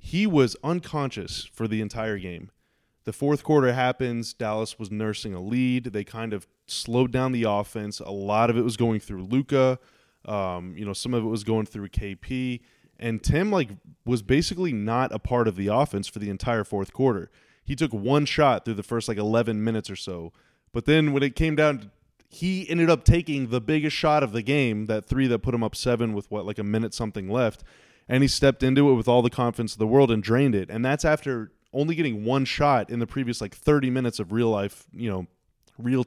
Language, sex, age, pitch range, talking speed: English, male, 20-39, 105-135 Hz, 220 wpm